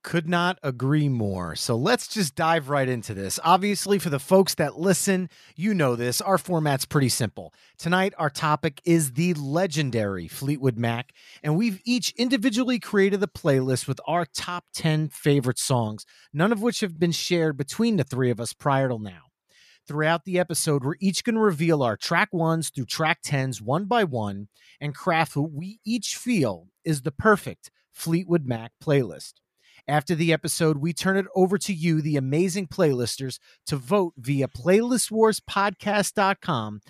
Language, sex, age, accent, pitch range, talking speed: English, male, 30-49, American, 125-190 Hz, 170 wpm